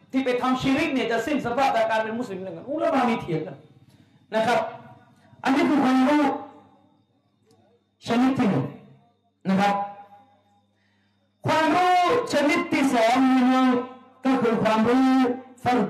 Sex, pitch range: male, 195-275 Hz